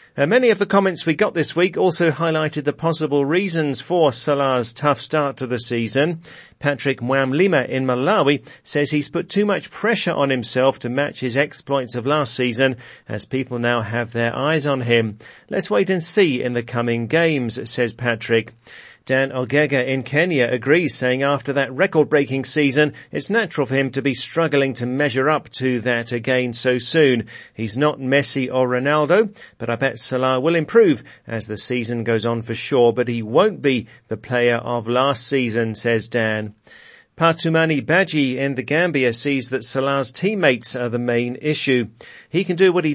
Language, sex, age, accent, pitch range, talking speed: English, male, 40-59, British, 120-155 Hz, 180 wpm